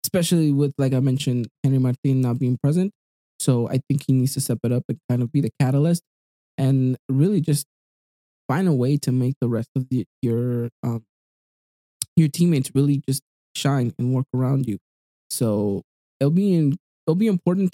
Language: English